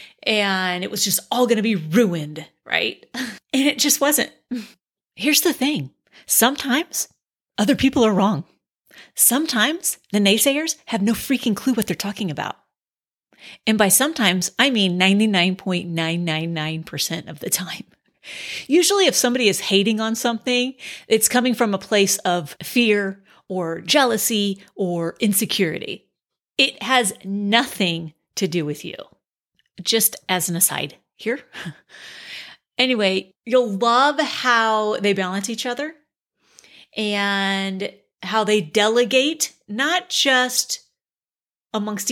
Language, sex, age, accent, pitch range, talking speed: English, female, 30-49, American, 195-255 Hz, 125 wpm